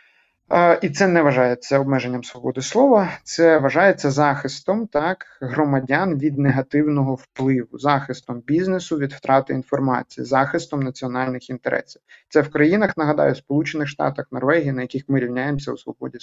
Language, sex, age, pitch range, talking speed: Ukrainian, male, 30-49, 135-165 Hz, 135 wpm